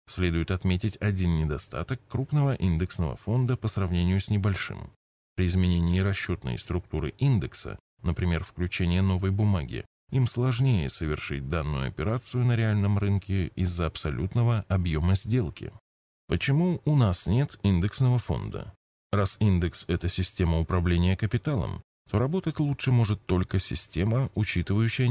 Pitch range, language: 85-120 Hz, Russian